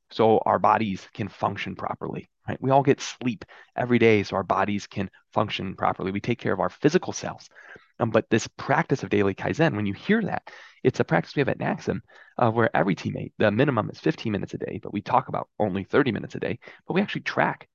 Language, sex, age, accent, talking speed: English, male, 20-39, American, 225 wpm